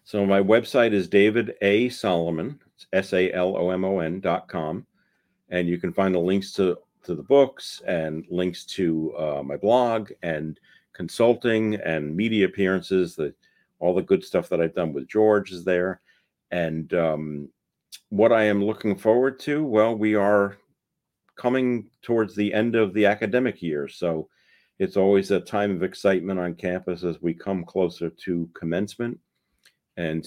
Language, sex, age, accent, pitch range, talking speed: English, male, 50-69, American, 90-105 Hz, 155 wpm